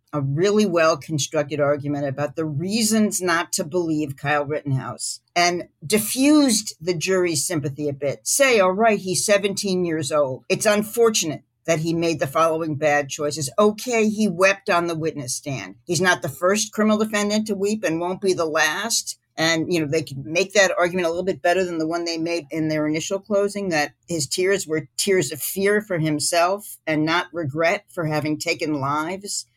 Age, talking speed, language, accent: 50-69, 185 wpm, English, American